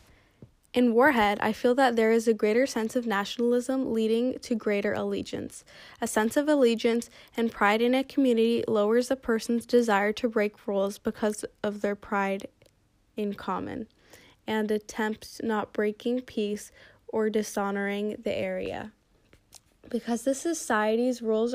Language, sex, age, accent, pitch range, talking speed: English, female, 10-29, American, 205-240 Hz, 140 wpm